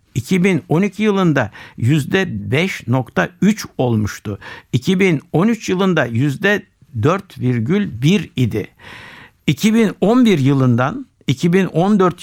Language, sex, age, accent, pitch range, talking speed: Turkish, male, 60-79, native, 125-180 Hz, 55 wpm